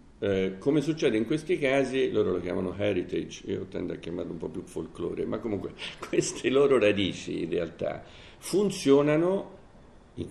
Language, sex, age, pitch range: Italian, male, 50-69, 90-140 Hz